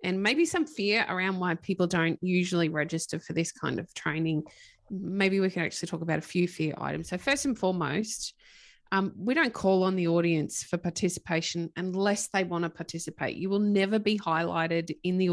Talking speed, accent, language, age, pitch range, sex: 195 wpm, Australian, English, 20-39, 170-210 Hz, female